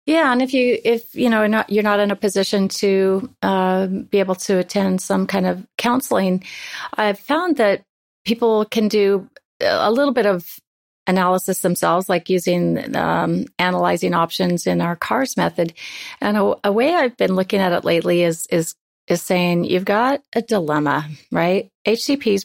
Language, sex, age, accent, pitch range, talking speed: English, female, 40-59, American, 180-215 Hz, 175 wpm